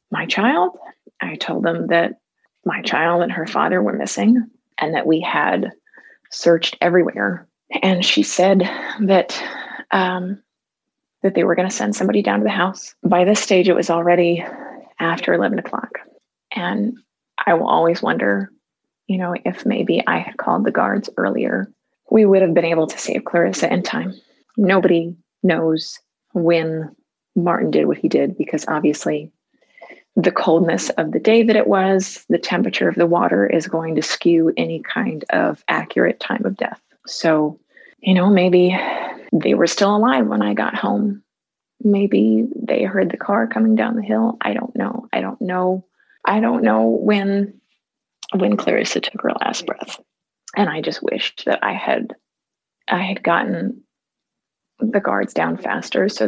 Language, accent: English, American